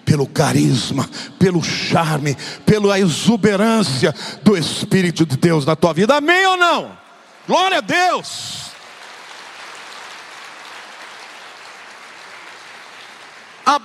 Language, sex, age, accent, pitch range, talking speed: Portuguese, male, 50-69, Brazilian, 205-345 Hz, 85 wpm